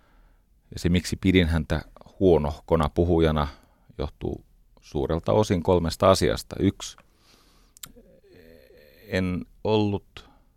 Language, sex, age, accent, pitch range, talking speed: Finnish, male, 40-59, native, 80-100 Hz, 85 wpm